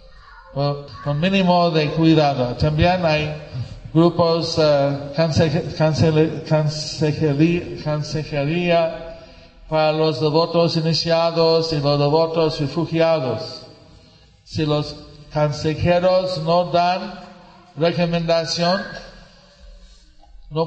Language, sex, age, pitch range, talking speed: English, male, 50-69, 145-165 Hz, 80 wpm